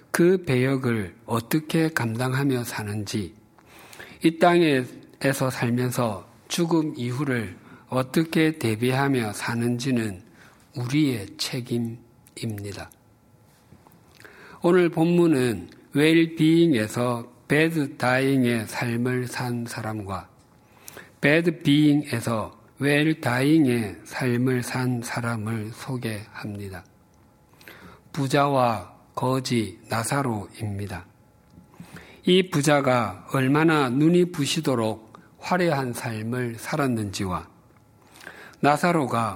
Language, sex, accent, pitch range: Korean, male, native, 115-150 Hz